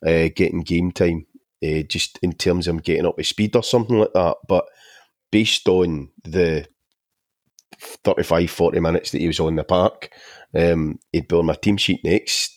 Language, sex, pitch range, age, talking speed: English, male, 90-110 Hz, 30-49, 180 wpm